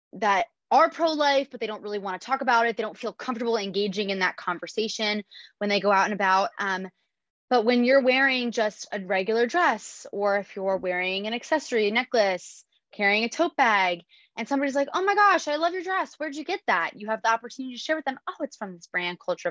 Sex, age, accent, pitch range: female, 20-39, American, 195-255 Hz